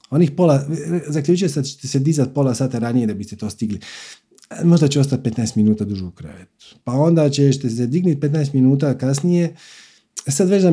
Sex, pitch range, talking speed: male, 115-160 Hz, 190 wpm